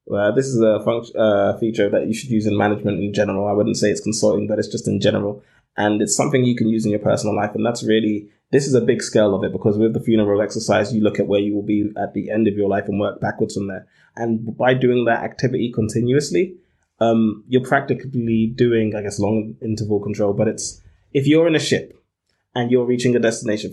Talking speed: 245 wpm